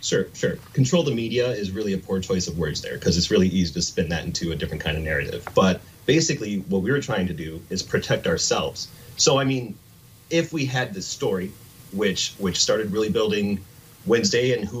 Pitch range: 95-130 Hz